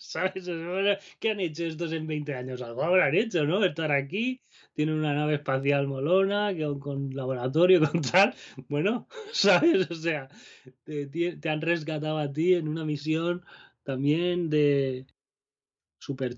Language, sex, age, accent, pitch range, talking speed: Spanish, male, 20-39, Spanish, 130-165 Hz, 145 wpm